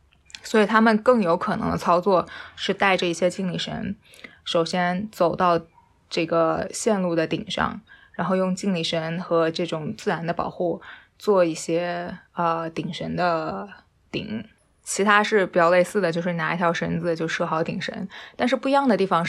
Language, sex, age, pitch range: Chinese, female, 20-39, 170-210 Hz